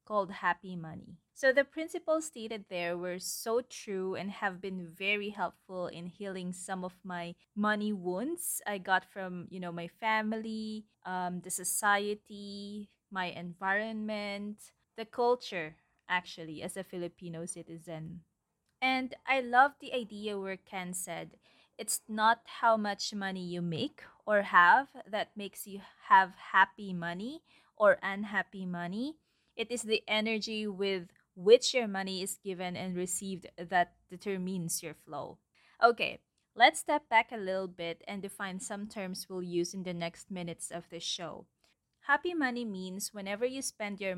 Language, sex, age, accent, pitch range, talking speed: English, female, 20-39, Filipino, 180-220 Hz, 150 wpm